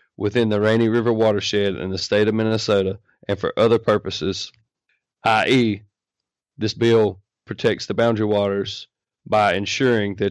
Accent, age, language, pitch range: American, 30-49, English, 100-115 Hz